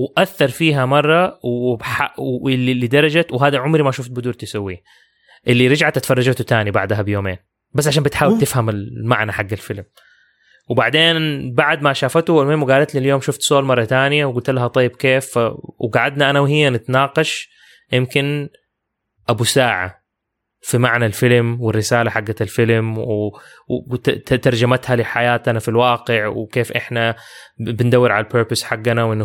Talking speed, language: 135 wpm, English